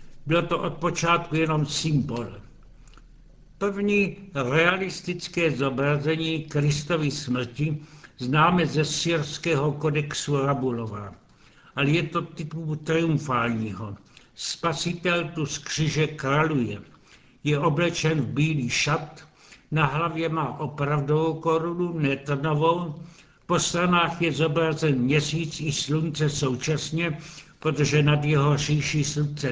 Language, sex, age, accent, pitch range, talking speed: Czech, male, 70-89, native, 145-165 Hz, 100 wpm